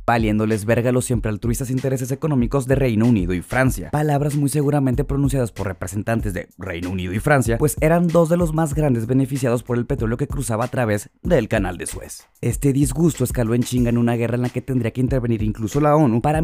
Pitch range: 115-150 Hz